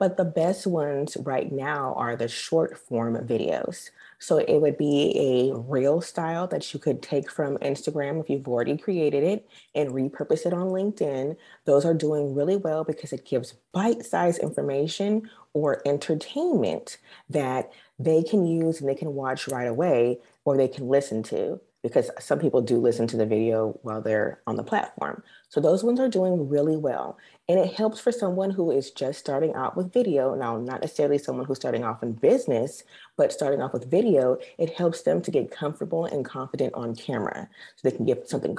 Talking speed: 190 wpm